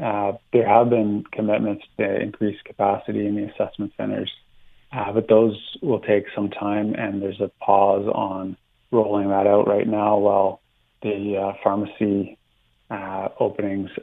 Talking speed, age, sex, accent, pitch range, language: 150 wpm, 30-49, male, American, 100-115 Hz, English